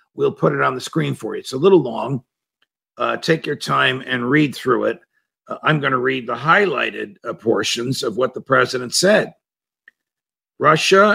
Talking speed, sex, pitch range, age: 190 wpm, male, 120-155 Hz, 50-69